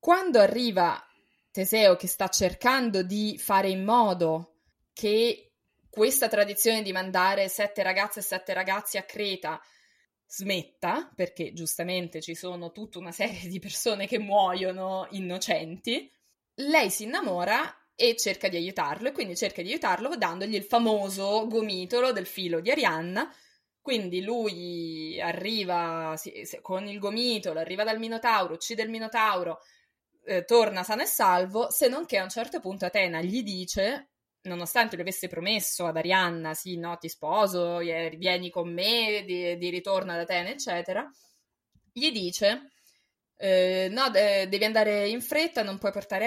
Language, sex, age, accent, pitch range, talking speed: Italian, female, 20-39, native, 180-230 Hz, 145 wpm